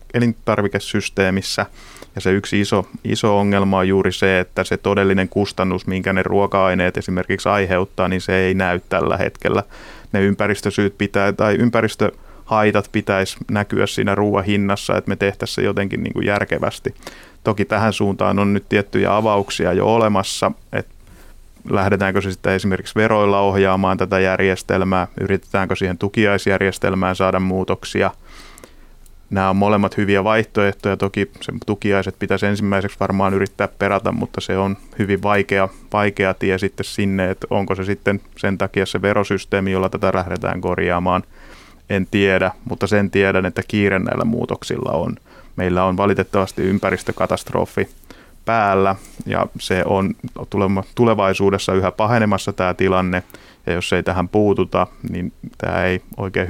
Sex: male